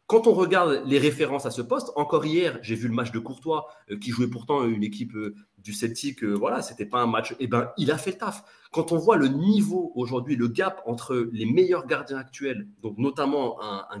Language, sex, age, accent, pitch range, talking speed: French, male, 30-49, French, 115-165 Hz, 235 wpm